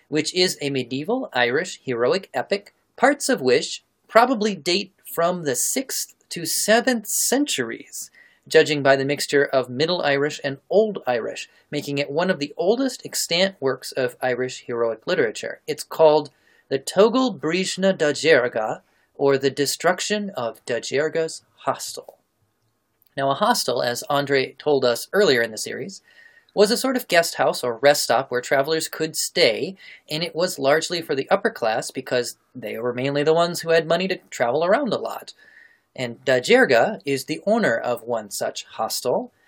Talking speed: 165 wpm